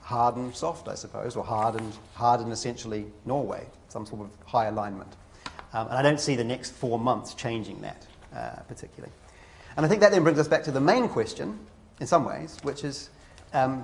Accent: British